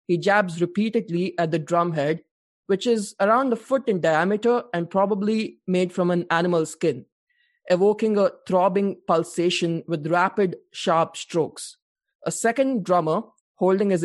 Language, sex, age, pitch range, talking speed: English, male, 20-39, 175-220 Hz, 145 wpm